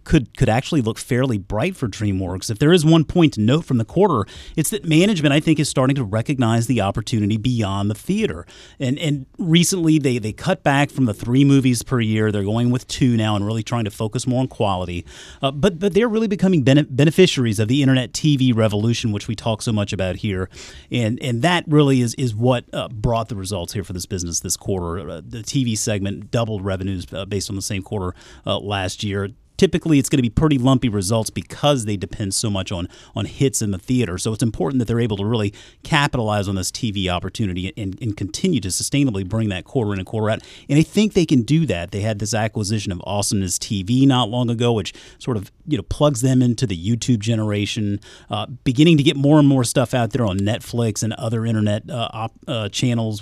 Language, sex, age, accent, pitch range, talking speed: English, male, 30-49, American, 105-140 Hz, 230 wpm